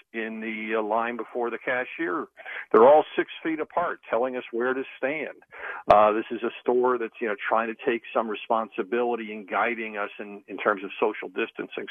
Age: 50-69